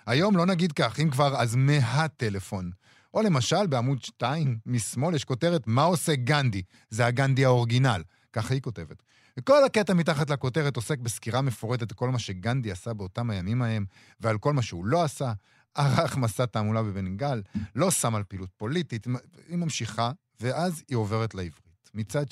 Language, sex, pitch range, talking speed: Hebrew, male, 110-160 Hz, 165 wpm